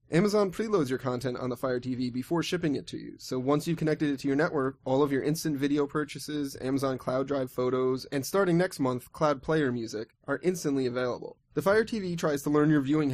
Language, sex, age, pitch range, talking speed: English, male, 20-39, 125-155 Hz, 225 wpm